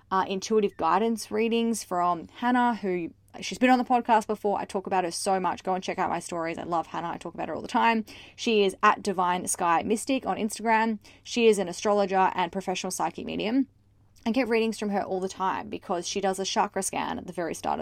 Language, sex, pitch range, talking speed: English, female, 190-235 Hz, 230 wpm